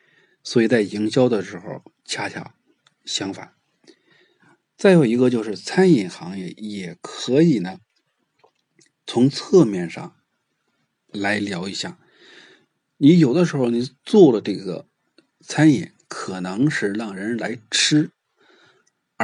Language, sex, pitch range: Chinese, male, 105-155 Hz